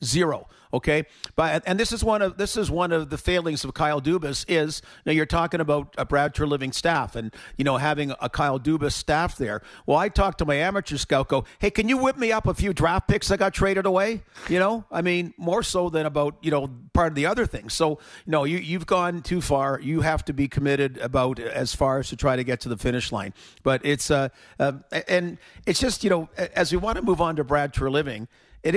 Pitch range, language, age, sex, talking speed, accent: 135-170 Hz, English, 50-69, male, 245 wpm, American